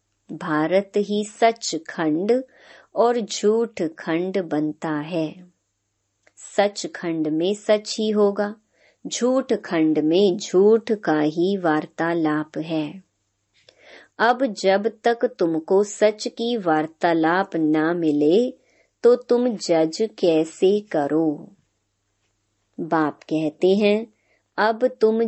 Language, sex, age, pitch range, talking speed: Hindi, male, 30-49, 160-210 Hz, 100 wpm